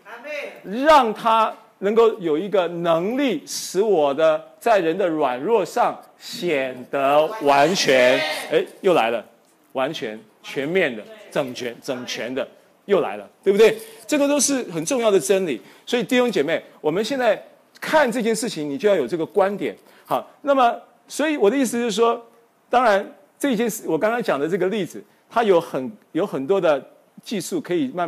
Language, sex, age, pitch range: Chinese, male, 40-59, 165-255 Hz